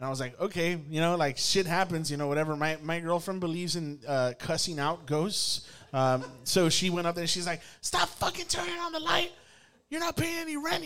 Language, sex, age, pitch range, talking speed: English, male, 20-39, 135-170 Hz, 230 wpm